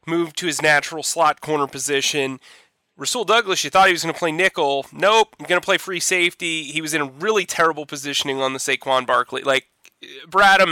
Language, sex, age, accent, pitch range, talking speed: English, male, 30-49, American, 135-160 Hz, 205 wpm